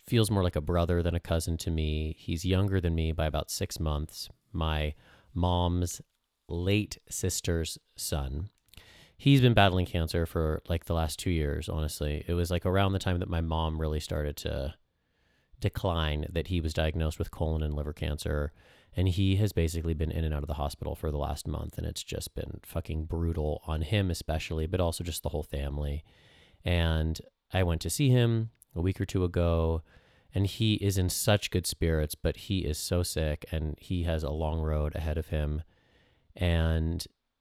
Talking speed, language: 190 wpm, English